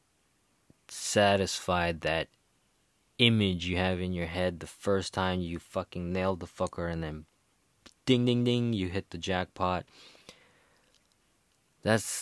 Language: English